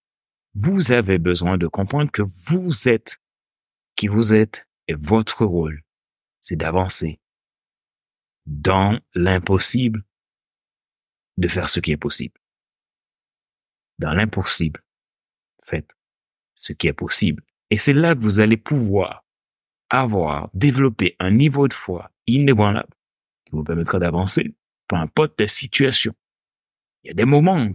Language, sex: French, male